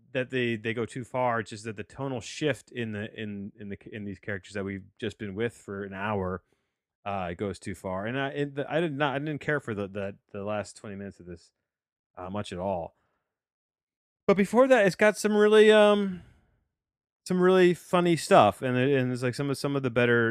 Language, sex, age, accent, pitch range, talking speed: English, male, 30-49, American, 95-130 Hz, 230 wpm